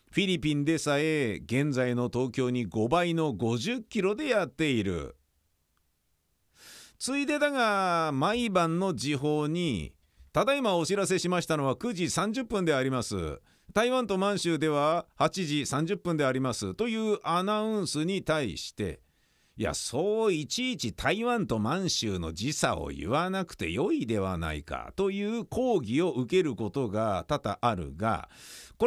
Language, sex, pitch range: Japanese, male, 130-200 Hz